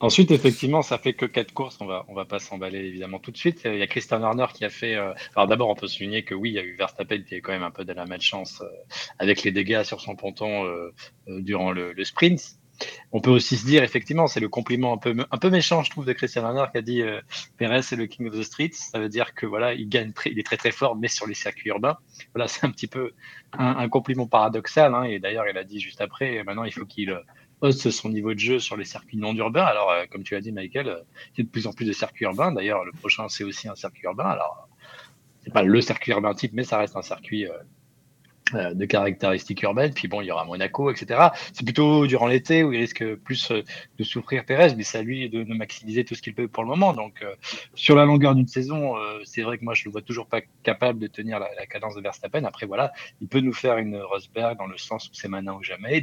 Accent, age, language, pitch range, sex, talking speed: French, 20-39, French, 105-130 Hz, male, 275 wpm